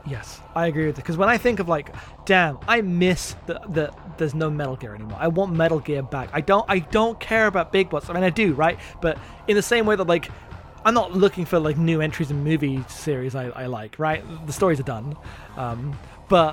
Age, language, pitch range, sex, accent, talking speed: 20-39, English, 135-175 Hz, male, British, 240 wpm